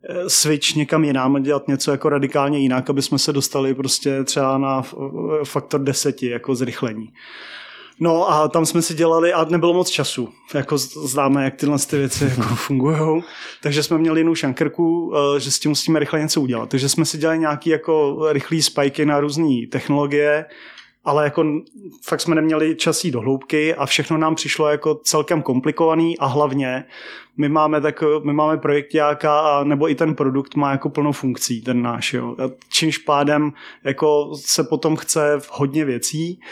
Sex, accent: male, native